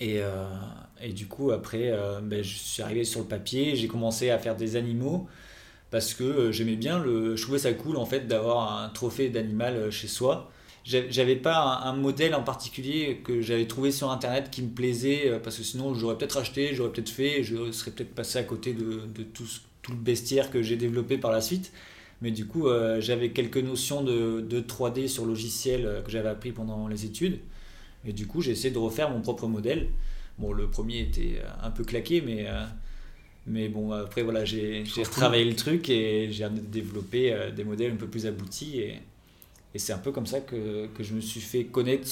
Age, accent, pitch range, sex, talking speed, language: 20-39, French, 110-130 Hz, male, 210 wpm, French